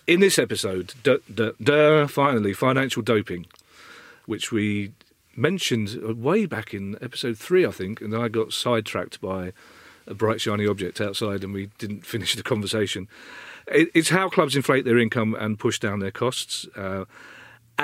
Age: 40-59